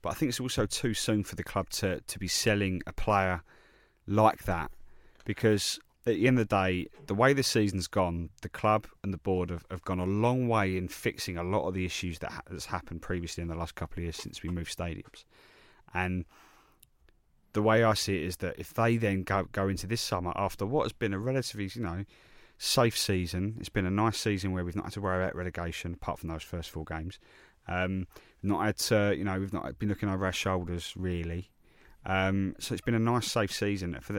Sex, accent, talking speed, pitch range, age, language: male, British, 230 wpm, 90-110 Hz, 30-49, English